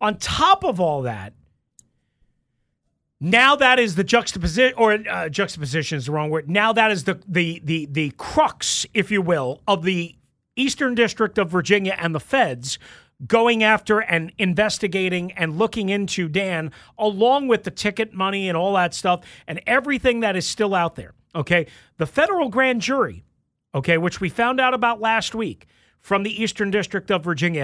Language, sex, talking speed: English, male, 175 wpm